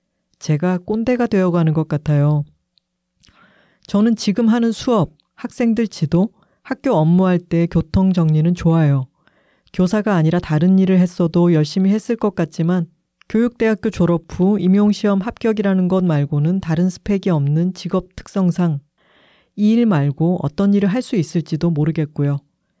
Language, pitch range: Korean, 160-205 Hz